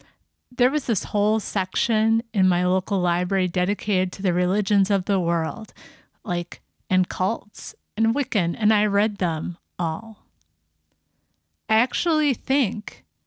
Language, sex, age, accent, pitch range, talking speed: English, female, 30-49, American, 185-215 Hz, 130 wpm